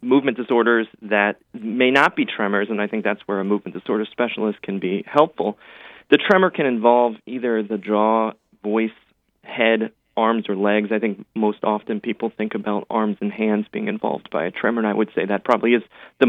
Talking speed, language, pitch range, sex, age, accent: 200 wpm, English, 105-120 Hz, male, 30-49, American